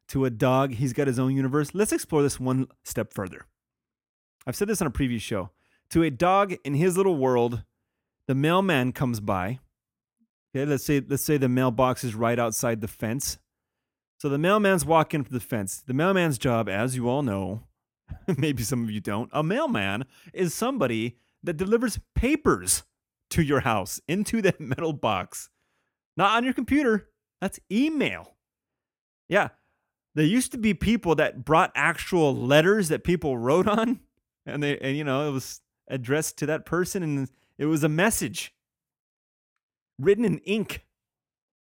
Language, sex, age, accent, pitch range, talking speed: English, male, 30-49, American, 120-170 Hz, 165 wpm